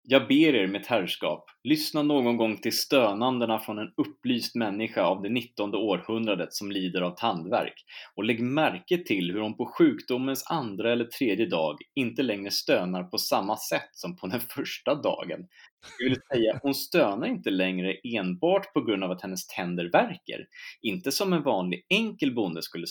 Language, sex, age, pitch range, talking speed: Swedish, male, 30-49, 100-135 Hz, 175 wpm